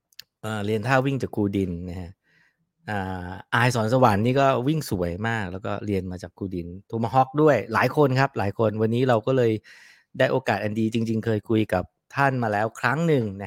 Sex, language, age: male, English, 20-39